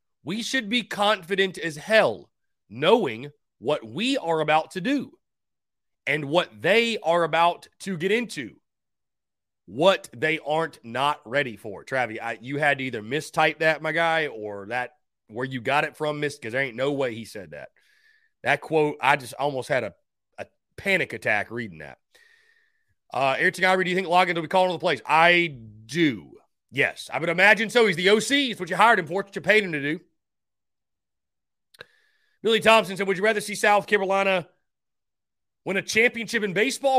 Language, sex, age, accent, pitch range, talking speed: English, male, 30-49, American, 135-210 Hz, 185 wpm